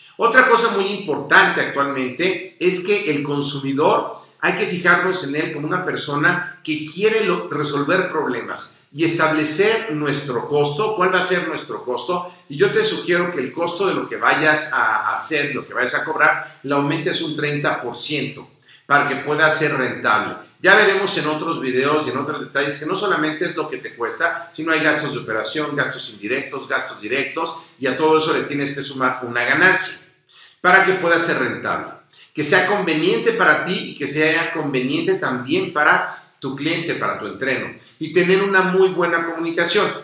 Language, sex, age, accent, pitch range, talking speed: Spanish, male, 50-69, Mexican, 140-175 Hz, 180 wpm